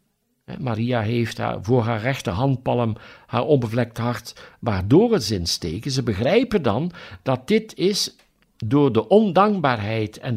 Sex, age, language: male, 60-79, Dutch